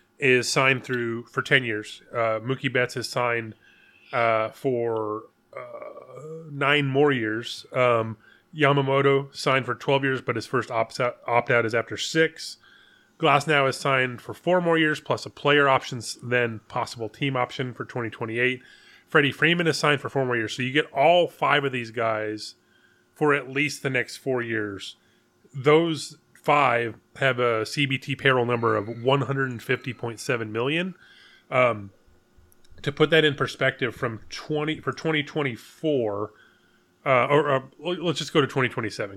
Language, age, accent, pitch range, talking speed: English, 30-49, American, 115-145 Hz, 150 wpm